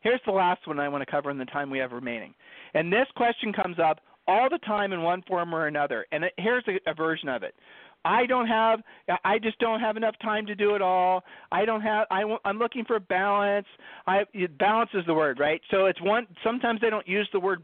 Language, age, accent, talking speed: English, 40-59, American, 230 wpm